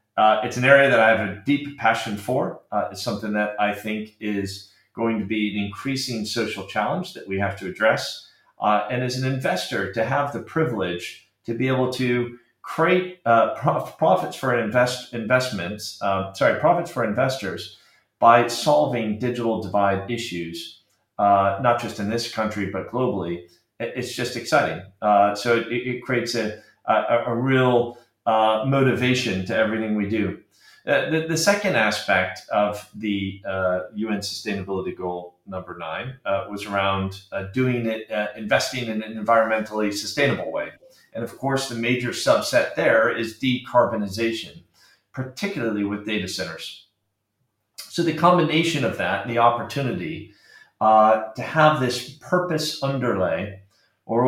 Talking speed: 150 wpm